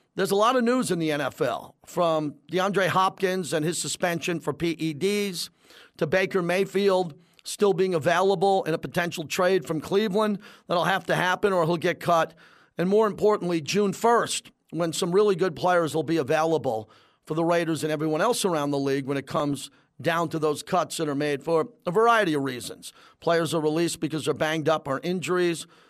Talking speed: 190 wpm